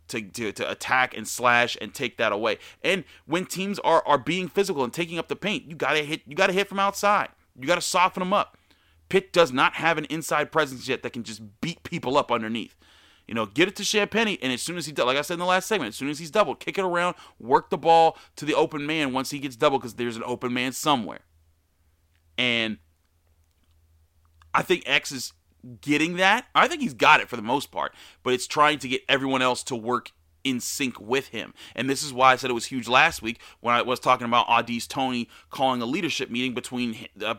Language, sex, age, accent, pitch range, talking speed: English, male, 30-49, American, 115-155 Hz, 240 wpm